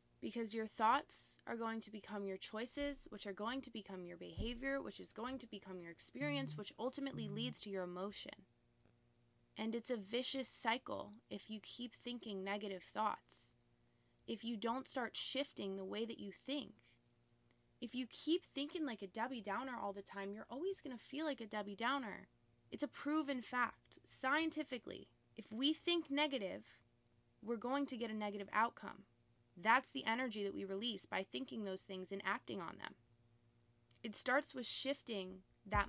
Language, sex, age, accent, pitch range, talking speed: English, female, 20-39, American, 185-245 Hz, 175 wpm